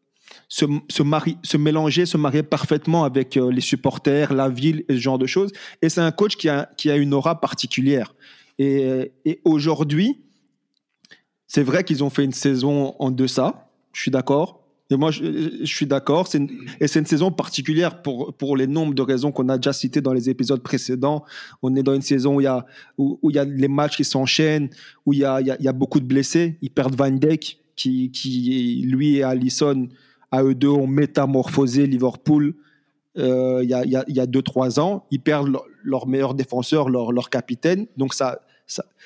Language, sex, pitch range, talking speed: French, male, 135-155 Hz, 205 wpm